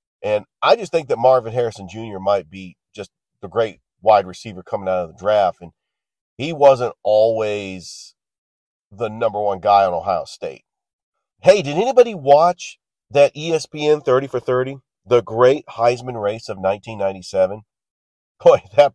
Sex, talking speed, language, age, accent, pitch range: male, 150 wpm, English, 40-59, American, 100-135 Hz